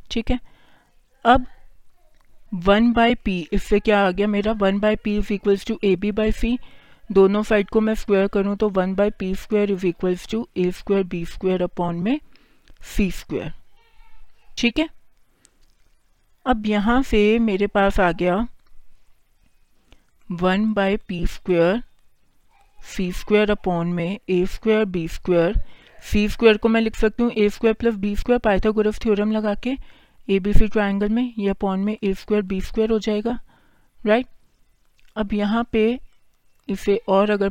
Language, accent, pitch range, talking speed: Hindi, native, 190-225 Hz, 135 wpm